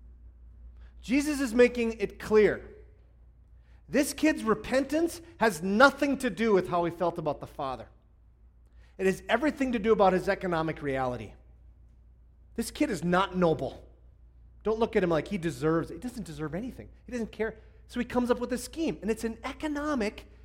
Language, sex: English, male